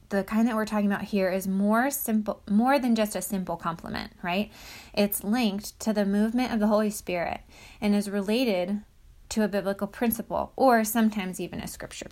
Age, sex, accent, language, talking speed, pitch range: 20-39, female, American, English, 190 wpm, 190-225 Hz